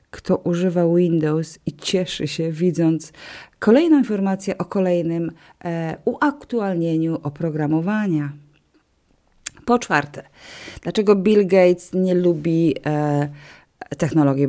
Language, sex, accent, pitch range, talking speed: Polish, female, native, 165-205 Hz, 85 wpm